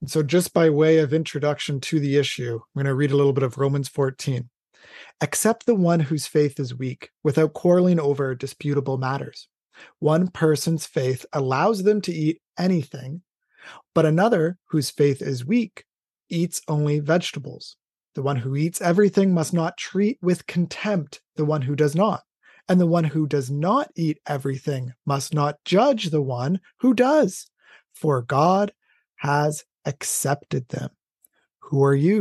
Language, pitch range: English, 140-185 Hz